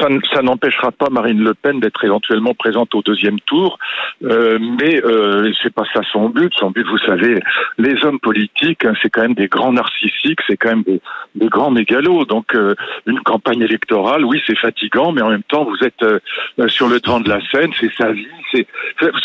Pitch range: 110-140 Hz